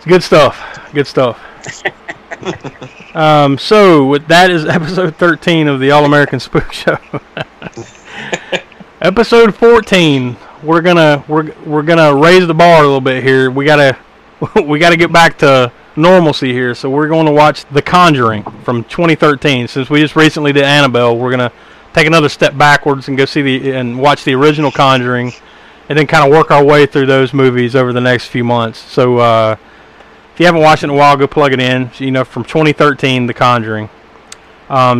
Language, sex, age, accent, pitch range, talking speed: English, male, 30-49, American, 130-155 Hz, 180 wpm